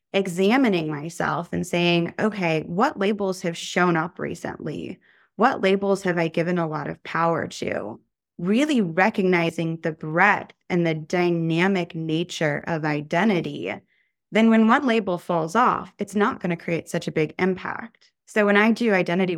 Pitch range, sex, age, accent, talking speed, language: 165-200 Hz, female, 20-39, American, 160 wpm, English